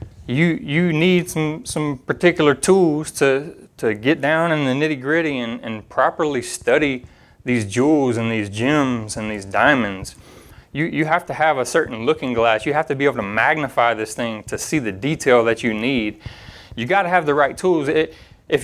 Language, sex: English, male